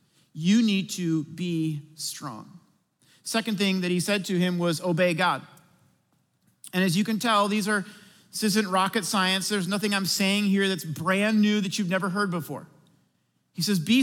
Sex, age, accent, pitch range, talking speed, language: male, 40-59, American, 180-230 Hz, 180 wpm, English